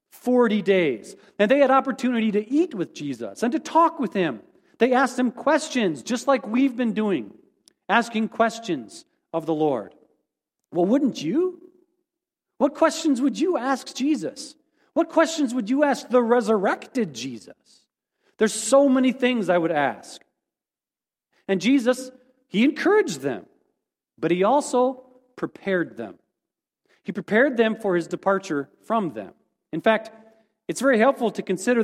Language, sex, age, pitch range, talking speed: English, male, 40-59, 190-275 Hz, 145 wpm